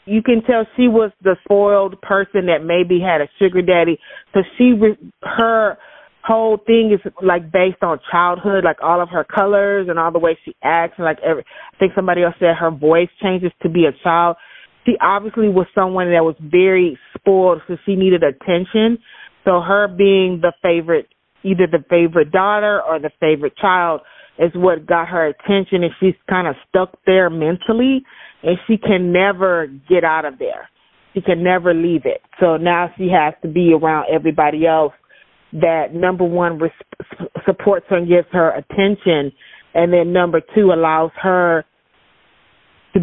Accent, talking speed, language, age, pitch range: American, 175 wpm, English, 30-49, 165-195 Hz